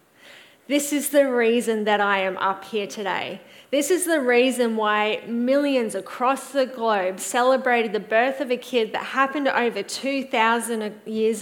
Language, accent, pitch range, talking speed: English, Australian, 235-280 Hz, 160 wpm